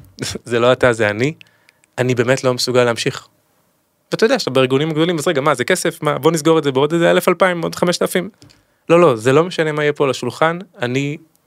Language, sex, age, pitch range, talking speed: Hebrew, male, 20-39, 125-160 Hz, 225 wpm